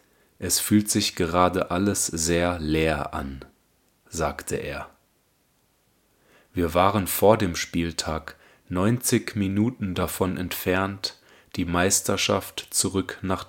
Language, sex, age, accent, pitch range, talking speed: German, male, 30-49, German, 85-100 Hz, 100 wpm